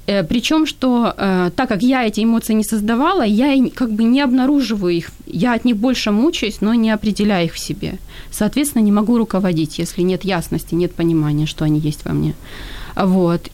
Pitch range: 195-270 Hz